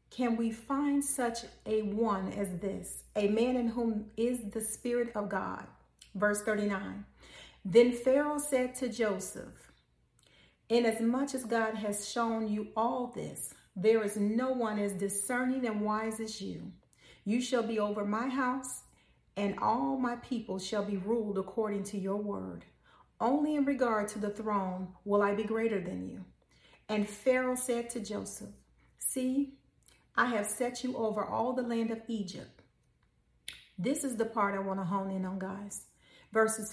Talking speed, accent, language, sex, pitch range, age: 160 wpm, American, English, female, 205-240 Hz, 40-59